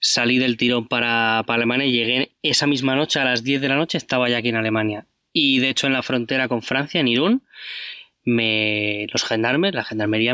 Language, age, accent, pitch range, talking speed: Spanish, 20-39, Spanish, 115-140 Hz, 215 wpm